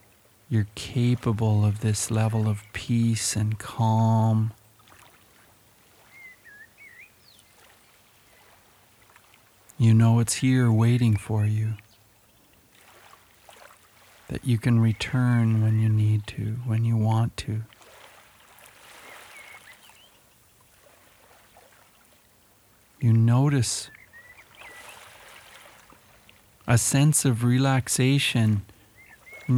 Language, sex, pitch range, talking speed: English, male, 105-120 Hz, 70 wpm